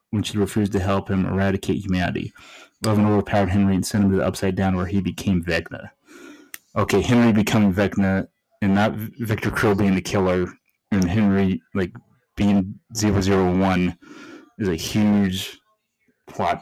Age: 30-49